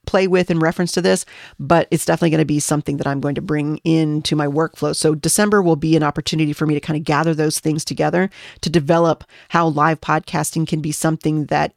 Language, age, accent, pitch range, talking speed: English, 30-49, American, 155-175 Hz, 230 wpm